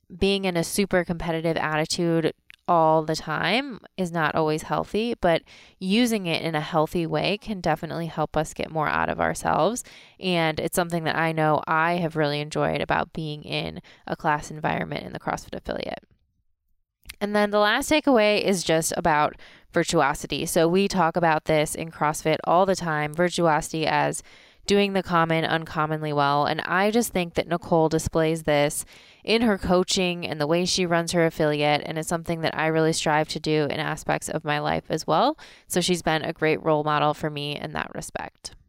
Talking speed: 190 wpm